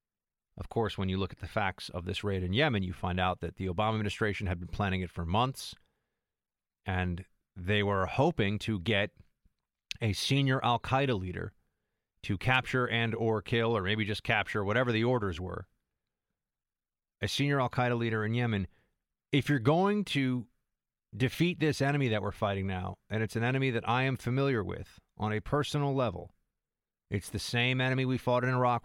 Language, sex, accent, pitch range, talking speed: English, male, American, 100-125 Hz, 180 wpm